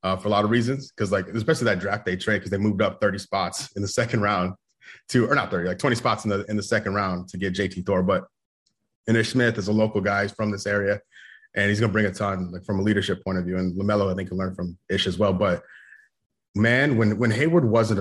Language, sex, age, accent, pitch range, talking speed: English, male, 30-49, American, 100-120 Hz, 265 wpm